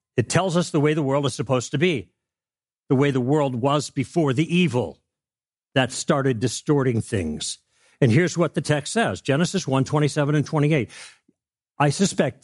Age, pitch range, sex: 60-79, 130-170 Hz, male